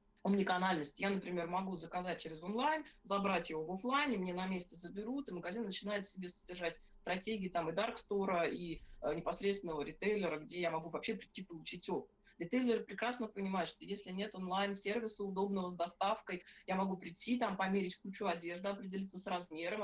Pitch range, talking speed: 180-220 Hz, 170 wpm